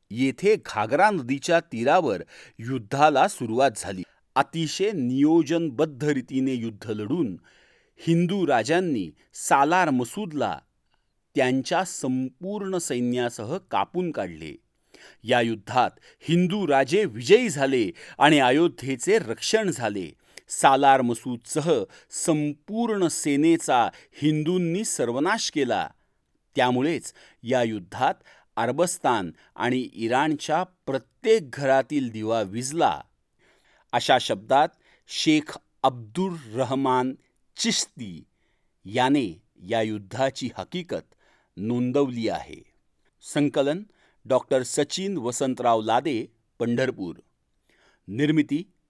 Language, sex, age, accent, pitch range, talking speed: Marathi, male, 40-59, native, 120-165 Hz, 80 wpm